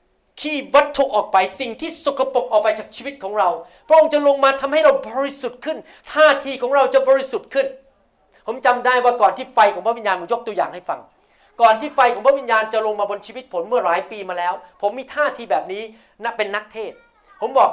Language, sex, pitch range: Thai, male, 210-270 Hz